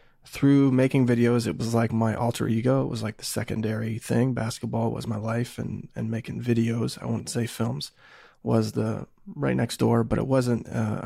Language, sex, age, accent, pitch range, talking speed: English, male, 20-39, American, 110-120 Hz, 195 wpm